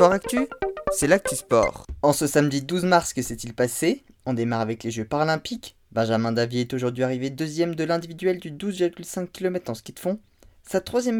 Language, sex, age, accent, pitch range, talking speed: French, male, 20-39, French, 120-190 Hz, 190 wpm